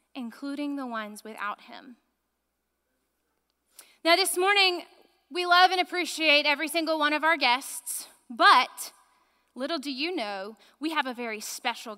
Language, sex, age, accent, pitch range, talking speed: English, female, 20-39, American, 245-335 Hz, 140 wpm